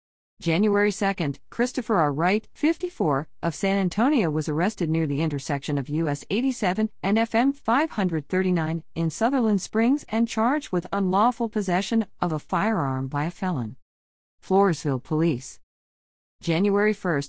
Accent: American